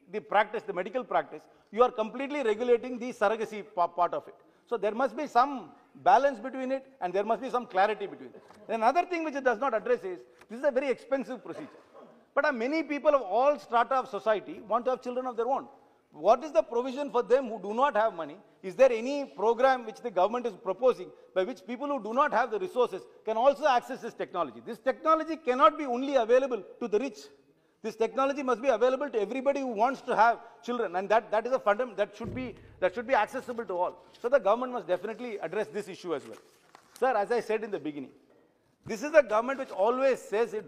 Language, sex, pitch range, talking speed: Tamil, male, 210-275 Hz, 225 wpm